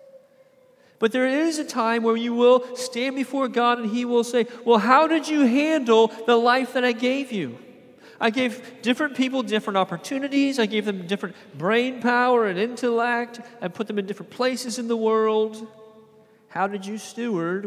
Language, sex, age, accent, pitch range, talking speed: English, male, 40-59, American, 205-245 Hz, 180 wpm